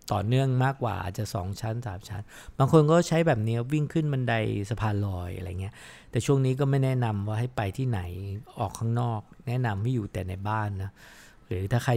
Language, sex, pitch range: English, male, 105-130 Hz